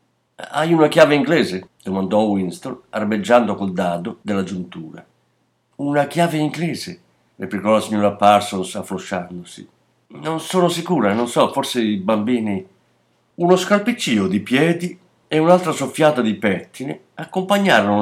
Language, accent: Italian, native